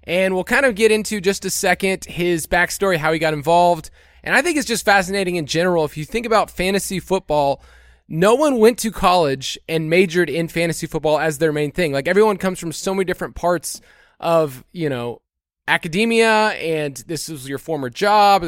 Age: 20-39